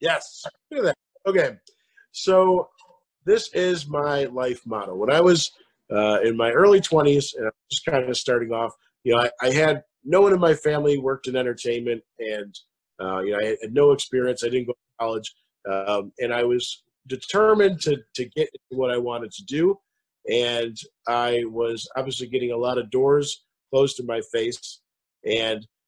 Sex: male